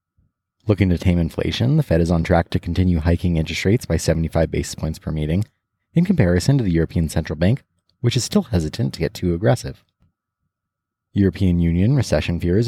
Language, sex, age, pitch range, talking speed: English, male, 30-49, 85-110 Hz, 185 wpm